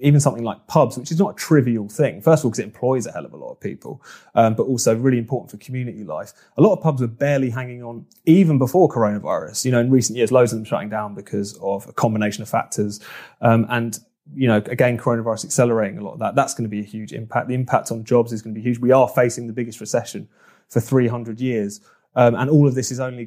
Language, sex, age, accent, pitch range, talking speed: English, male, 30-49, British, 115-135 Hz, 260 wpm